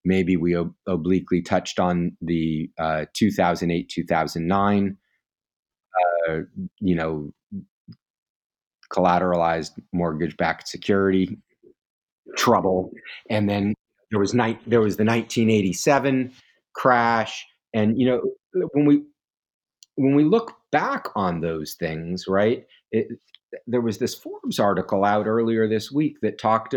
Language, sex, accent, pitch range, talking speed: English, male, American, 90-120 Hz, 115 wpm